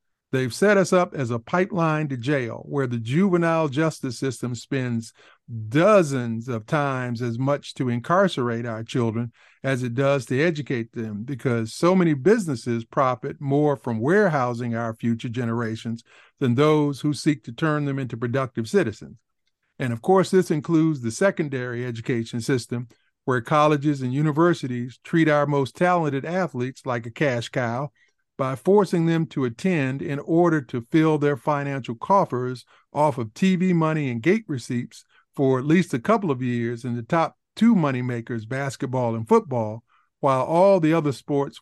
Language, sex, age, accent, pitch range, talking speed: English, male, 50-69, American, 125-160 Hz, 160 wpm